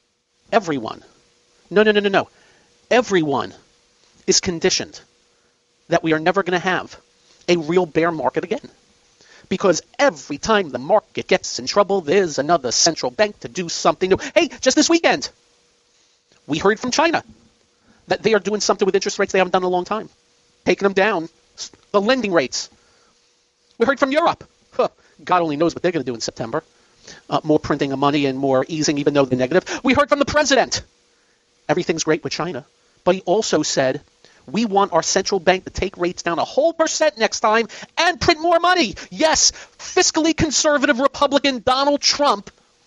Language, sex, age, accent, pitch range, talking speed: English, male, 40-59, American, 180-275 Hz, 180 wpm